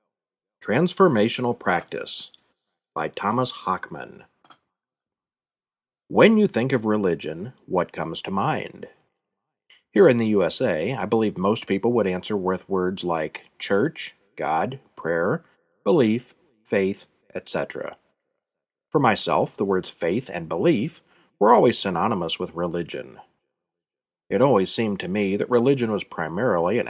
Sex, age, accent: male, 50-69, American